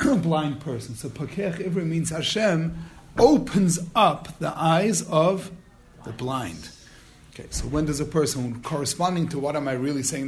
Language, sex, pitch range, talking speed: English, male, 130-170 Hz, 160 wpm